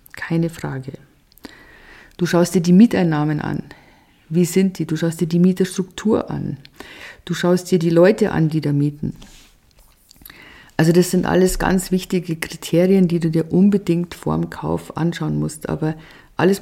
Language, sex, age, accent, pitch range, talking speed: German, female, 50-69, German, 155-190 Hz, 155 wpm